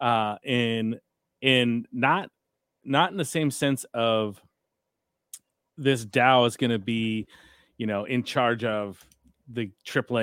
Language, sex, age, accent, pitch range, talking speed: English, male, 30-49, American, 110-130 Hz, 135 wpm